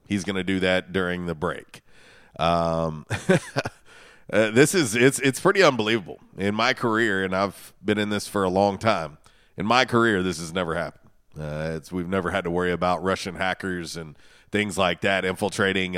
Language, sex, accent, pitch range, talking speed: English, male, American, 85-110 Hz, 190 wpm